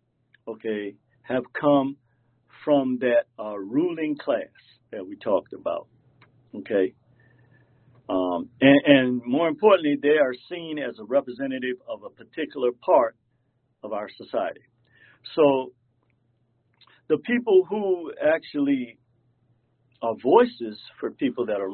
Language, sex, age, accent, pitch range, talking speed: English, male, 50-69, American, 120-145 Hz, 115 wpm